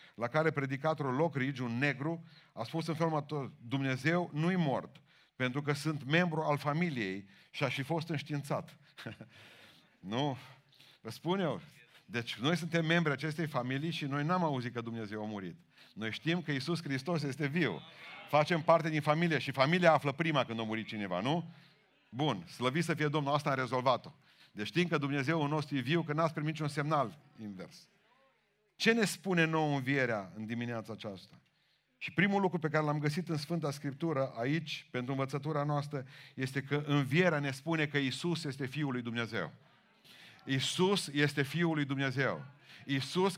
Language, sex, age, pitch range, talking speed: Romanian, male, 40-59, 135-165 Hz, 170 wpm